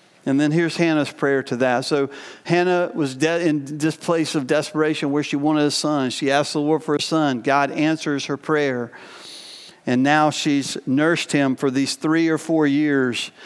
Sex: male